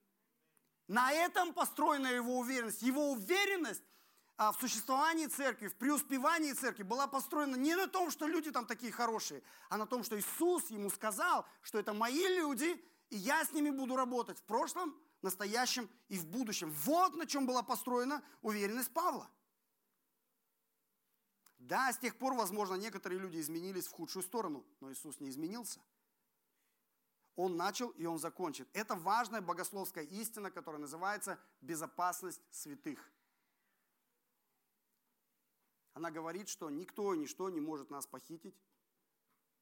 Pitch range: 175-280 Hz